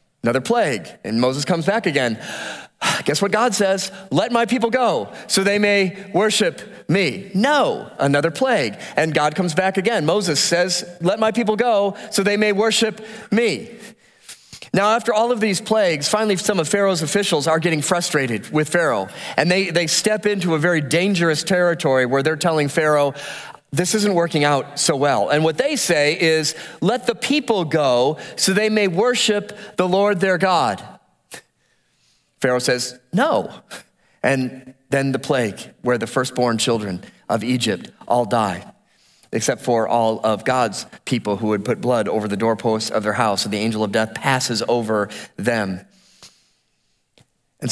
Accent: American